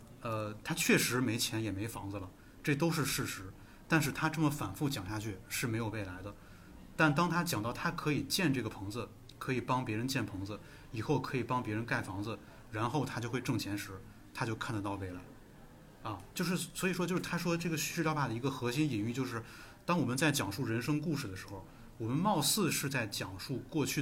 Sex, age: male, 20-39